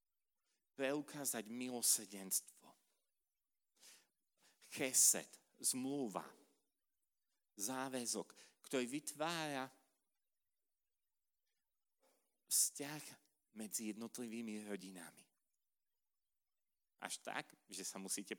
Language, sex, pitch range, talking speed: Slovak, male, 105-135 Hz, 50 wpm